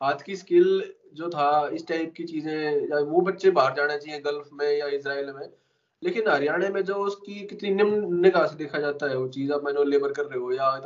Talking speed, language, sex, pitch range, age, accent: 180 wpm, Hindi, male, 145-195 Hz, 20-39, native